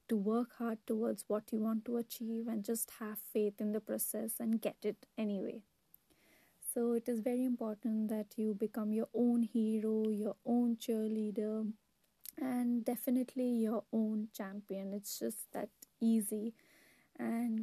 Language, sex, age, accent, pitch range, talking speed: English, female, 30-49, Indian, 215-235 Hz, 150 wpm